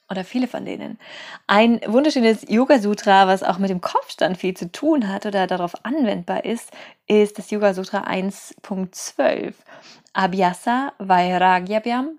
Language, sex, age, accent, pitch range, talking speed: German, female, 20-39, German, 190-245 Hz, 130 wpm